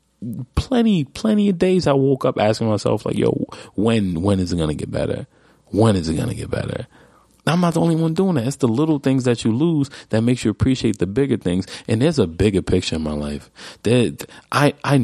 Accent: American